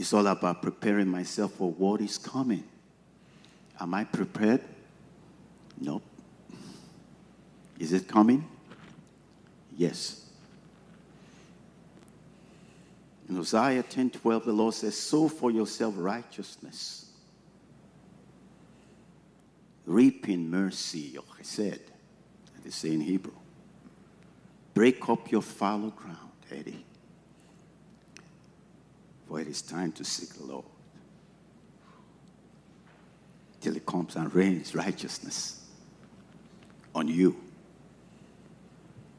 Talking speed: 90 wpm